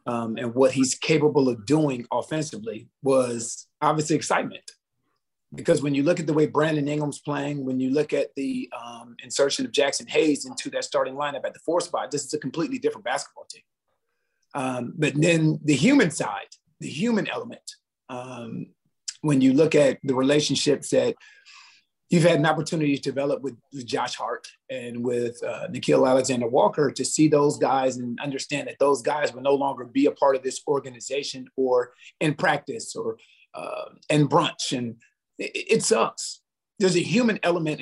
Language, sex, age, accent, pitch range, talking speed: English, male, 30-49, American, 130-160 Hz, 175 wpm